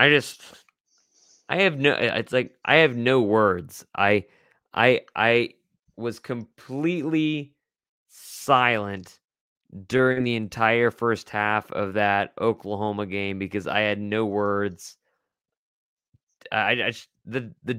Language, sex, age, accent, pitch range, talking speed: English, male, 20-39, American, 110-135 Hz, 120 wpm